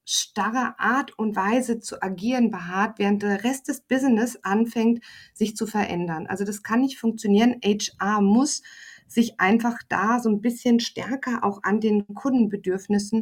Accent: German